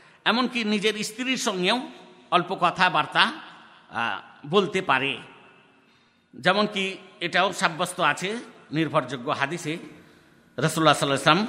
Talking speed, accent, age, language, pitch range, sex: 70 wpm, native, 50-69, Bengali, 145-195 Hz, male